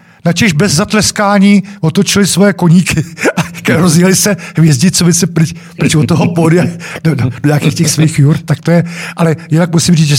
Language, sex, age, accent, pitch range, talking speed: Czech, male, 50-69, native, 130-170 Hz, 165 wpm